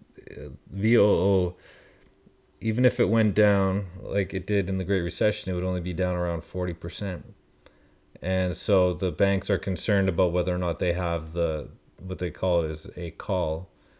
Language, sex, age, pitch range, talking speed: English, male, 30-49, 80-95 Hz, 175 wpm